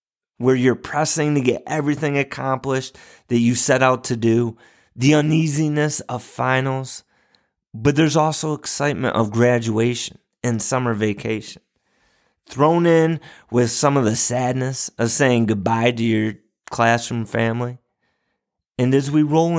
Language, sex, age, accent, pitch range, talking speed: English, male, 30-49, American, 115-145 Hz, 135 wpm